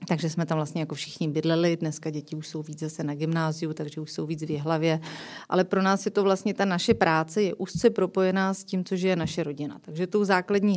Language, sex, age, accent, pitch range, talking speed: Czech, female, 30-49, native, 180-210 Hz, 235 wpm